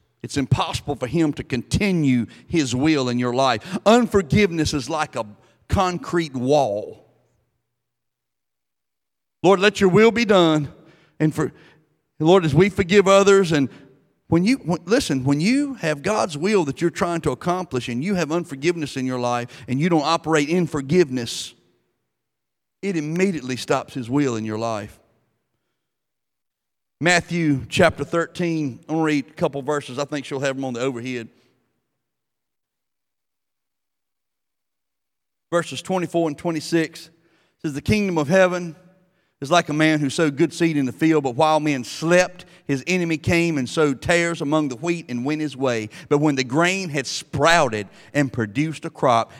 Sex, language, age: male, English, 40-59